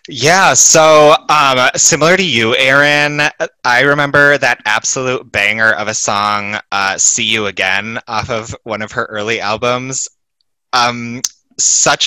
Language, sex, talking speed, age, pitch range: English, male, 140 wpm, 20-39, 105-135 Hz